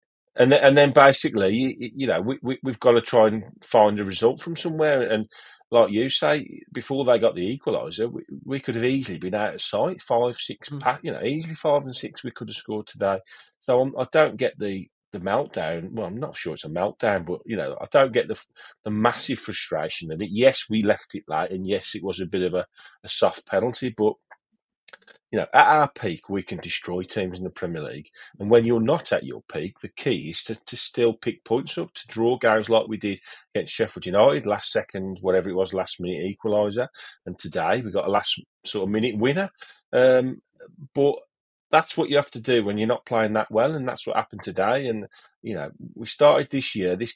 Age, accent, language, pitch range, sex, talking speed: 30-49, British, English, 100-130 Hz, male, 215 wpm